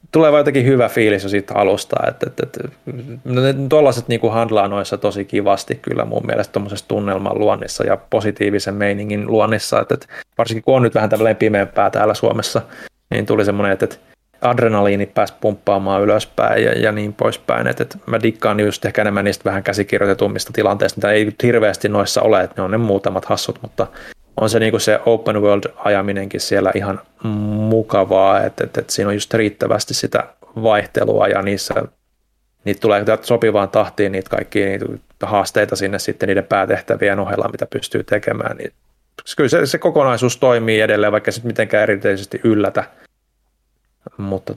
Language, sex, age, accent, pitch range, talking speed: Finnish, male, 30-49, native, 95-110 Hz, 160 wpm